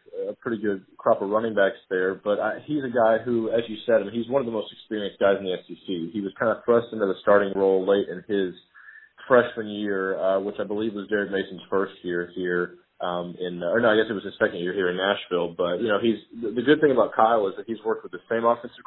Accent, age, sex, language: American, 30-49, male, English